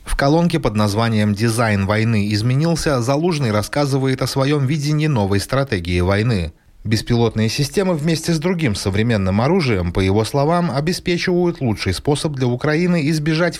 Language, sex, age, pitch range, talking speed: Russian, male, 30-49, 105-165 Hz, 135 wpm